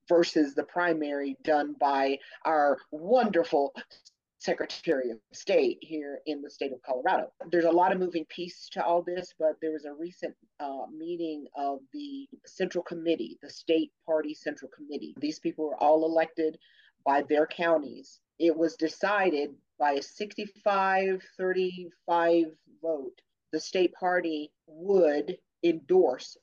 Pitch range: 150-185 Hz